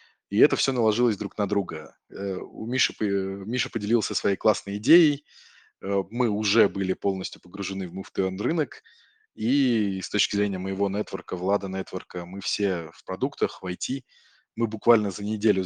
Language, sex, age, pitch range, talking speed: Russian, male, 20-39, 95-110 Hz, 145 wpm